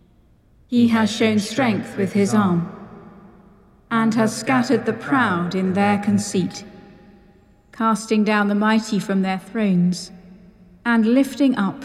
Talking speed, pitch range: 125 wpm, 195-230 Hz